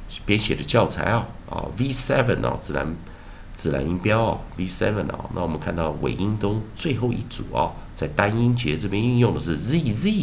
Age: 50-69